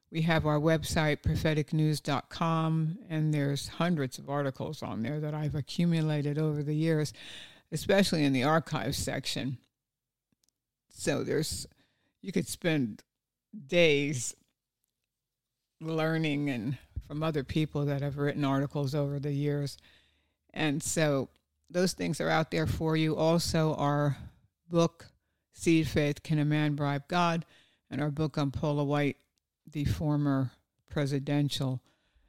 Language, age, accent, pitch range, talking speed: English, 60-79, American, 135-155 Hz, 130 wpm